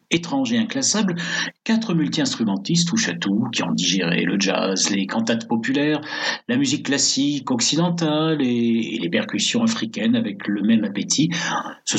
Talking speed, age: 140 wpm, 60-79